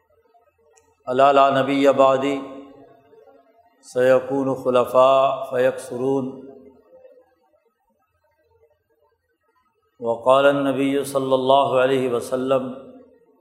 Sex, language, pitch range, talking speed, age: male, Urdu, 130-145 Hz, 55 wpm, 50-69